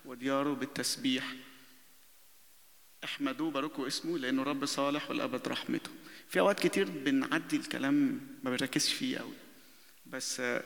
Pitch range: 135-175 Hz